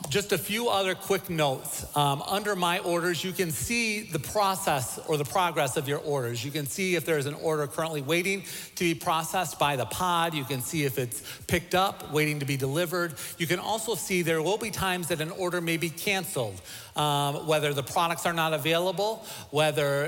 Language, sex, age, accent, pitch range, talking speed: English, male, 40-59, American, 140-175 Hz, 210 wpm